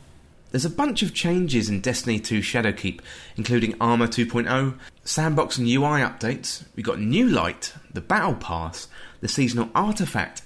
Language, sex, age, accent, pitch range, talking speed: English, male, 30-49, British, 105-140 Hz, 150 wpm